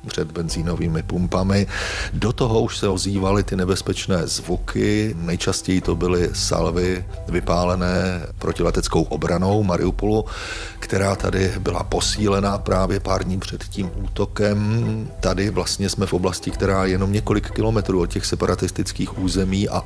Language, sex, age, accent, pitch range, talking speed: Czech, male, 40-59, native, 90-105 Hz, 135 wpm